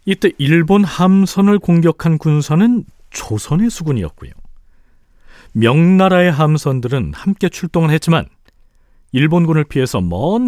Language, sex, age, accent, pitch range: Korean, male, 40-59, native, 110-165 Hz